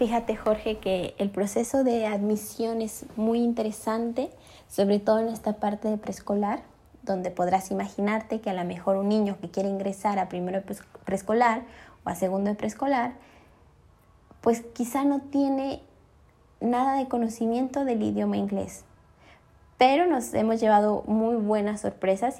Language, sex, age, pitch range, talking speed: Spanish, female, 20-39, 200-260 Hz, 145 wpm